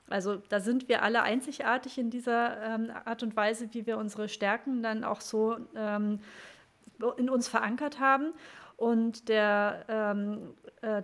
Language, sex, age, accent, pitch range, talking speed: English, female, 30-49, German, 220-260 Hz, 150 wpm